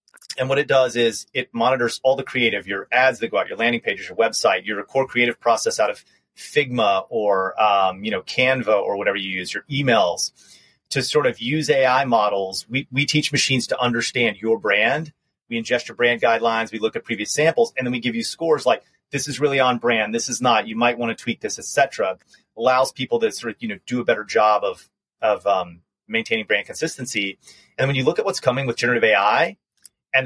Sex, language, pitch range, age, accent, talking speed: male, English, 115-155 Hz, 30-49, American, 220 wpm